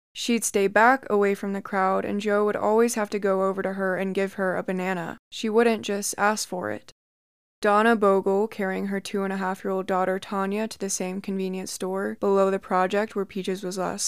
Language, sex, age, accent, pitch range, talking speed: English, female, 20-39, American, 190-220 Hz, 200 wpm